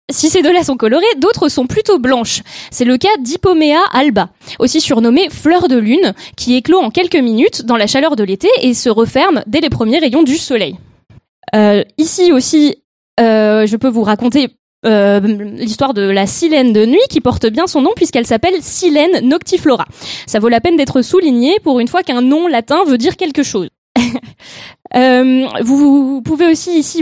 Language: French